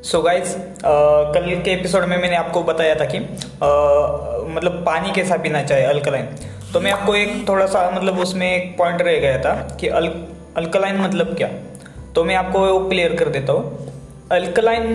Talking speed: 185 wpm